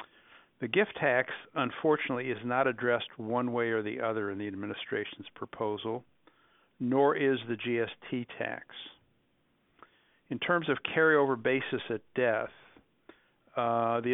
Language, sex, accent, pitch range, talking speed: English, male, American, 110-135 Hz, 125 wpm